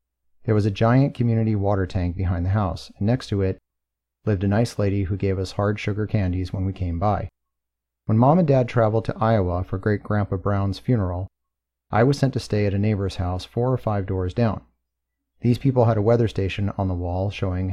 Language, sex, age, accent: English, male, 30-49, American